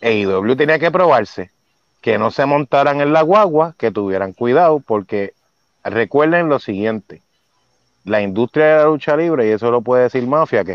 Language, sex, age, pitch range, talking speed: English, male, 30-49, 115-160 Hz, 180 wpm